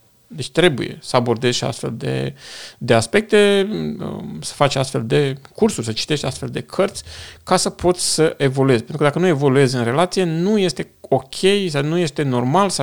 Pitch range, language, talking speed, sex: 125-165 Hz, Romanian, 180 wpm, male